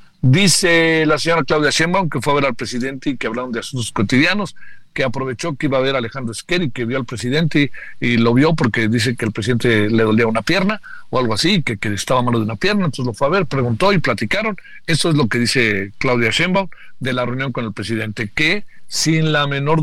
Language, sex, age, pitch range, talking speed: Spanish, male, 50-69, 120-165 Hz, 240 wpm